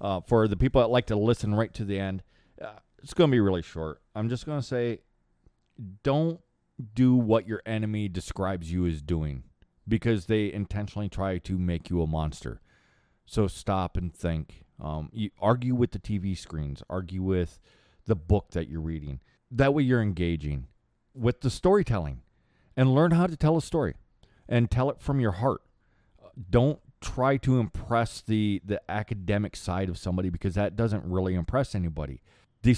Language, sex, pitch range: English, male, 90-120 Hz